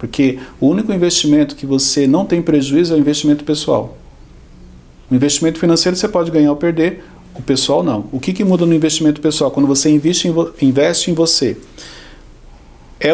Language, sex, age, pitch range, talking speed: Portuguese, male, 50-69, 135-175 Hz, 175 wpm